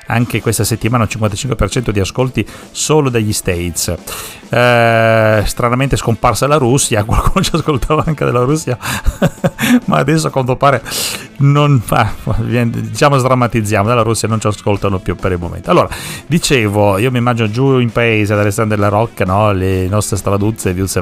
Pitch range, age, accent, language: 100-120 Hz, 30-49, native, Italian